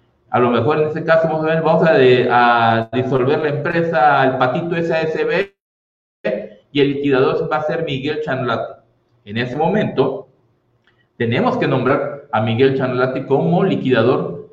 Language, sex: Spanish, male